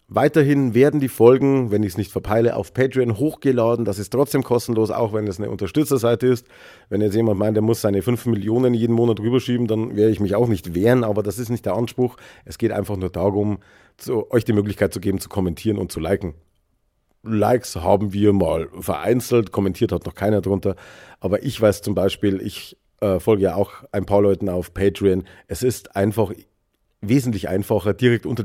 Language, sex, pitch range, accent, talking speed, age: German, male, 95-120 Hz, German, 200 wpm, 40-59